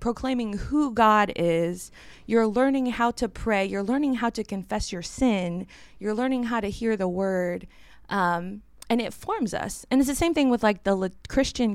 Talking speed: 190 wpm